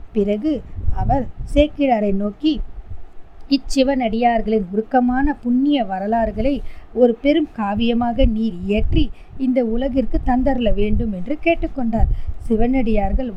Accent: native